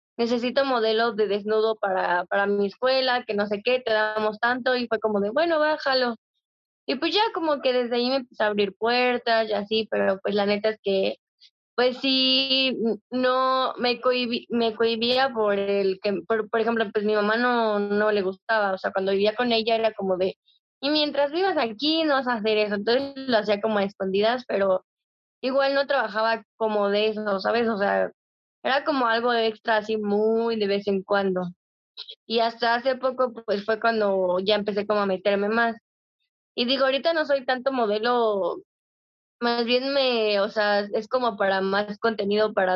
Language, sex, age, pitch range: Spanish, female, 20-39, 205-250 Hz